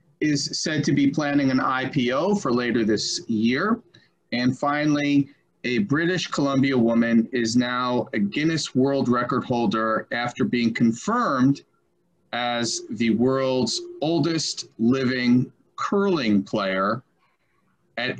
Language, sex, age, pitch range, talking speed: English, male, 40-59, 120-165 Hz, 115 wpm